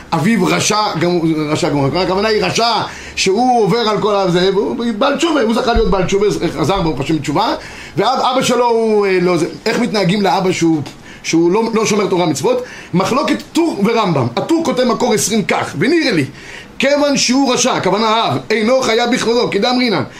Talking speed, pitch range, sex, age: 190 wpm, 185-245 Hz, male, 30-49